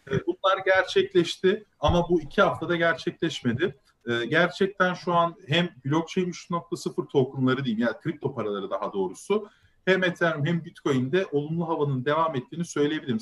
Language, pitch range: Turkish, 140-175 Hz